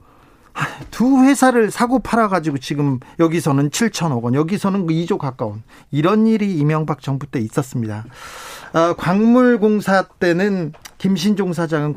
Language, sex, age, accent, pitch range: Korean, male, 40-59, native, 140-210 Hz